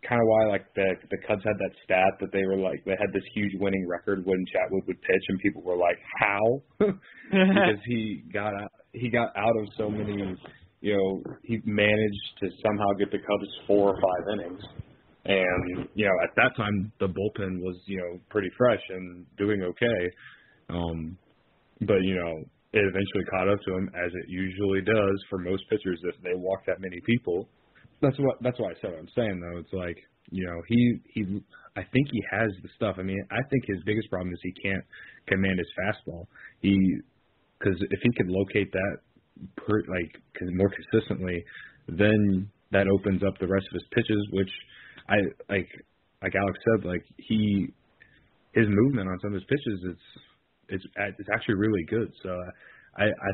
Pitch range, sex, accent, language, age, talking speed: 90-105 Hz, male, American, English, 30-49, 190 wpm